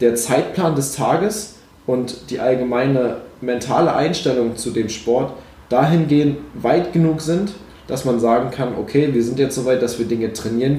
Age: 20-39